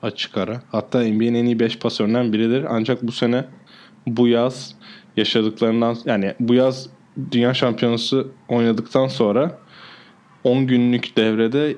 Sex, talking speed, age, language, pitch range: male, 125 wpm, 20-39, Turkish, 110-125 Hz